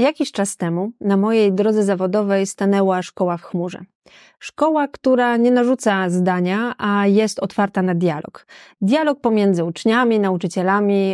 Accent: native